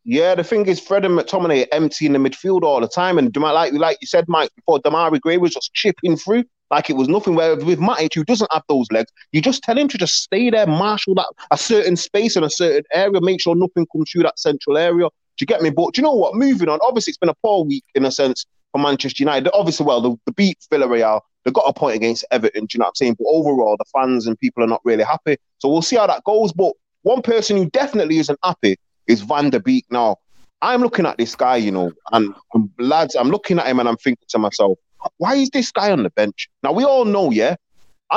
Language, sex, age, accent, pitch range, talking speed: English, male, 20-39, British, 145-240 Hz, 255 wpm